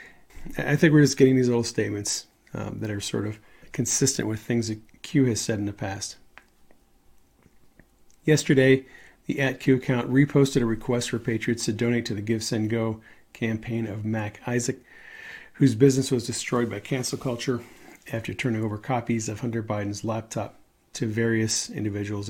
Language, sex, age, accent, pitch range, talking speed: English, male, 40-59, American, 110-135 Hz, 165 wpm